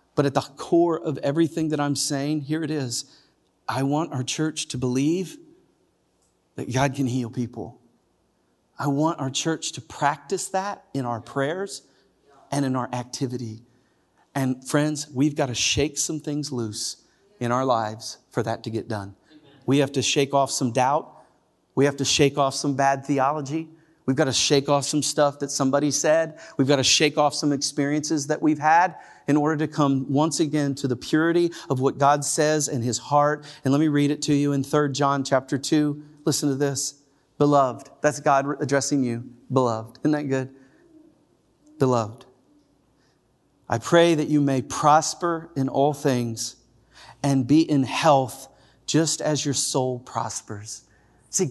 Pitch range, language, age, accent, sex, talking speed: 130-155 Hz, English, 40-59, American, male, 175 wpm